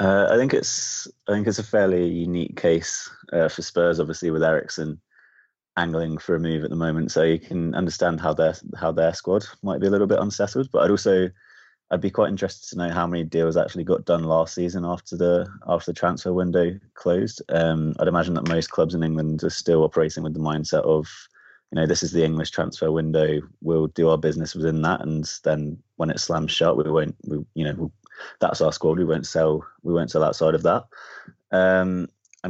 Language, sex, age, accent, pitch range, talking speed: English, male, 20-39, British, 80-85 Hz, 220 wpm